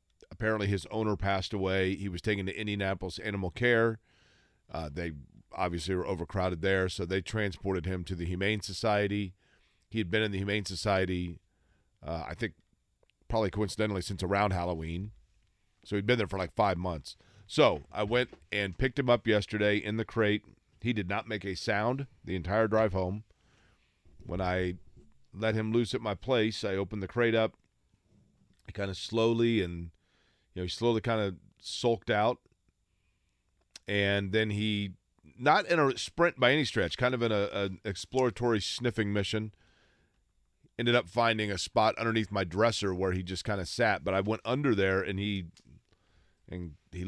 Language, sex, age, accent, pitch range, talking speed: English, male, 40-59, American, 90-110 Hz, 170 wpm